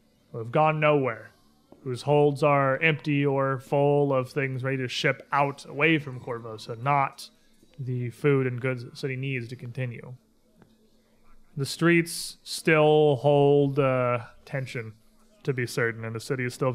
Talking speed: 160 wpm